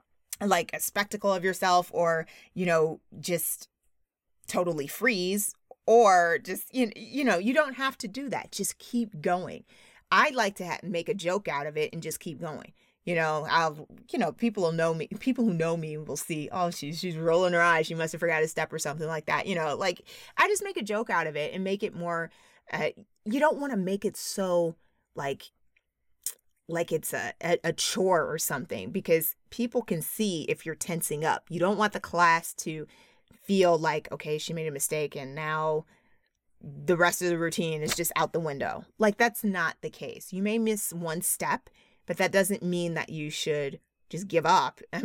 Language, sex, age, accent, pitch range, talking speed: English, female, 30-49, American, 160-205 Hz, 205 wpm